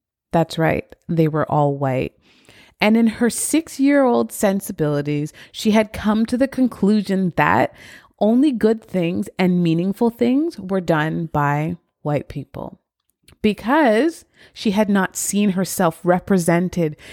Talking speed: 125 wpm